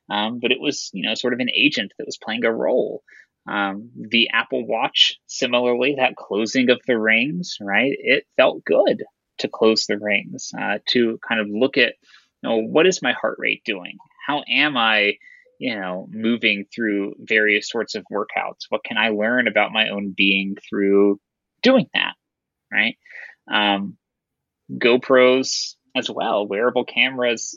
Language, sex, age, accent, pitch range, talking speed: English, male, 20-39, American, 105-170 Hz, 165 wpm